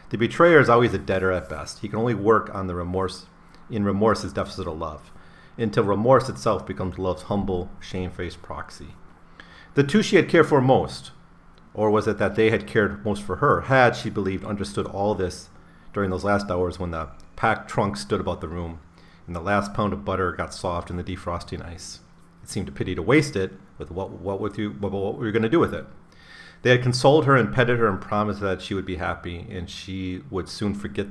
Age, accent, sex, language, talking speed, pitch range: 40-59, American, male, English, 220 wpm, 90-110 Hz